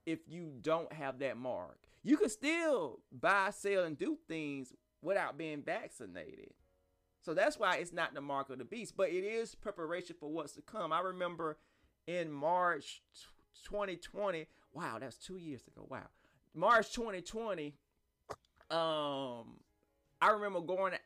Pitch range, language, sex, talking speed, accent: 135-170 Hz, English, male, 150 wpm, American